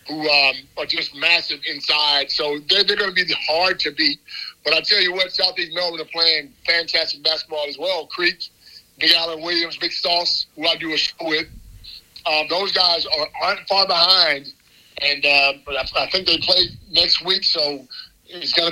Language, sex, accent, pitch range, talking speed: English, male, American, 150-185 Hz, 190 wpm